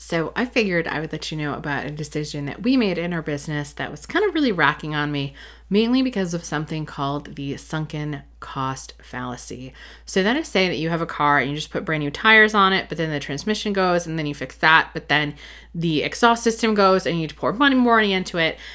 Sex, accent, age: female, American, 20-39